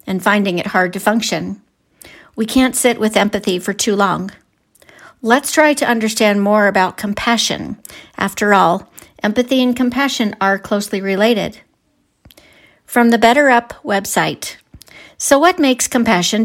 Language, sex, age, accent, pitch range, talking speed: English, female, 50-69, American, 185-230 Hz, 140 wpm